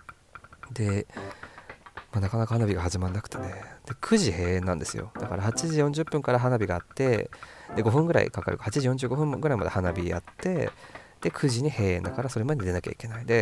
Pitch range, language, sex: 95-140 Hz, Japanese, male